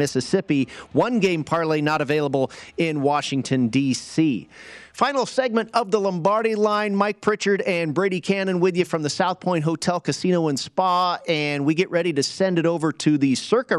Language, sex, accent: English, male, American